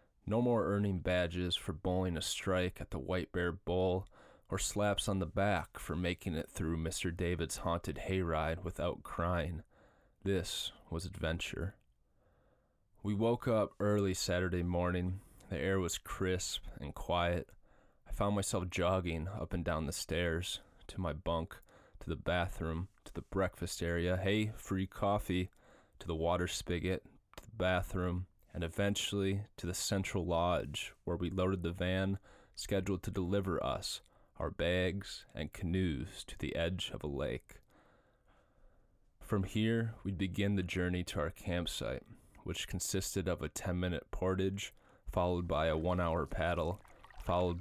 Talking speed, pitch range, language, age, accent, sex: 150 wpm, 85-100 Hz, English, 20-39, American, male